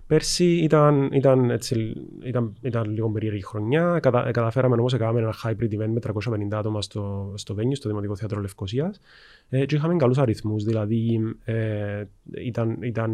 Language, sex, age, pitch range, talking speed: Greek, male, 20-39, 110-135 Hz, 150 wpm